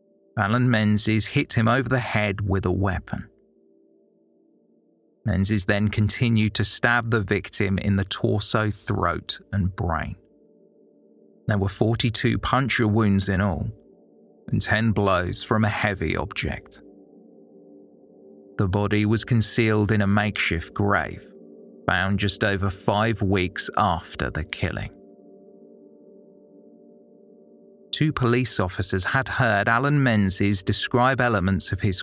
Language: English